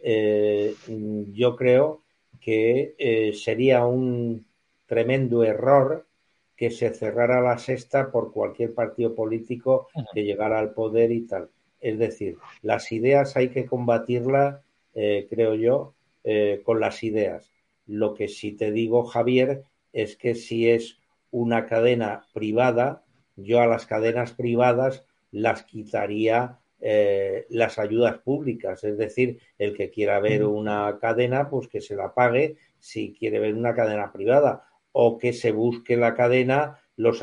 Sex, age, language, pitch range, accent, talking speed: male, 60-79, Spanish, 110-130 Hz, Spanish, 140 wpm